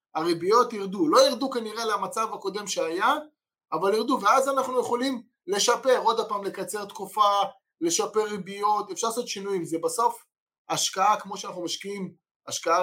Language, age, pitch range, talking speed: Hebrew, 20-39, 180-240 Hz, 140 wpm